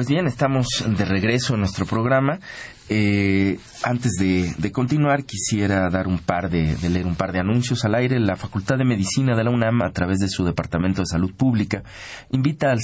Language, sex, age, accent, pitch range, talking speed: Spanish, male, 40-59, Mexican, 95-125 Hz, 195 wpm